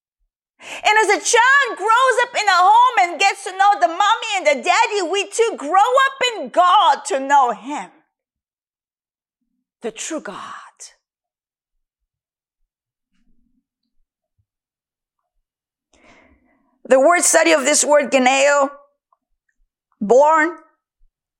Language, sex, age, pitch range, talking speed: English, female, 40-59, 250-355 Hz, 105 wpm